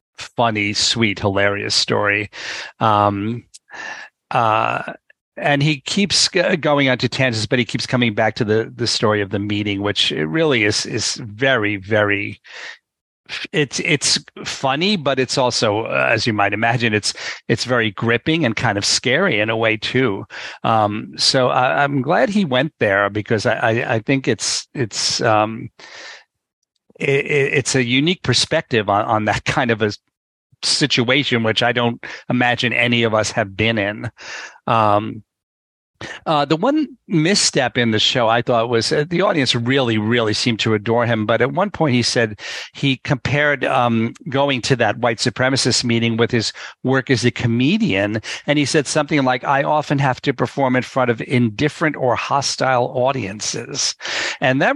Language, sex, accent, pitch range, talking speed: English, male, American, 110-140 Hz, 165 wpm